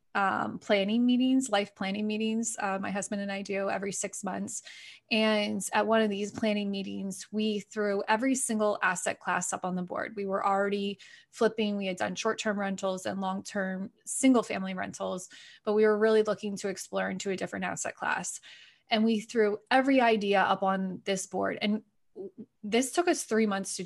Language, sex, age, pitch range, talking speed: English, female, 20-39, 190-215 Hz, 185 wpm